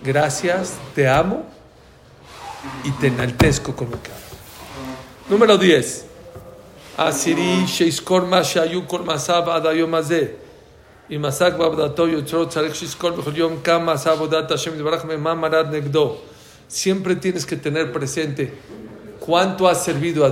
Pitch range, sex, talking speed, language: 145-180 Hz, male, 60 wpm, English